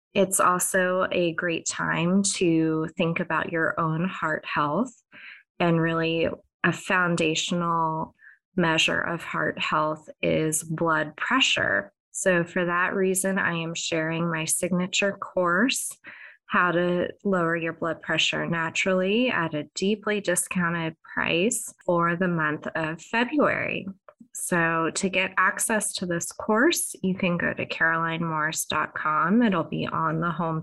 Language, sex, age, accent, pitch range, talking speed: English, female, 20-39, American, 160-195 Hz, 130 wpm